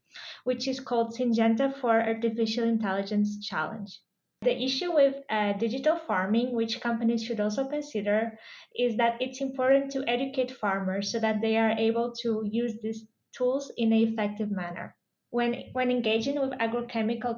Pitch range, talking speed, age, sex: 215-245 Hz, 150 wpm, 20-39, female